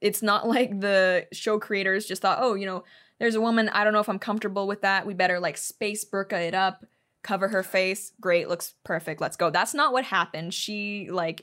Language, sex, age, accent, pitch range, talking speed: English, female, 20-39, American, 180-230 Hz, 225 wpm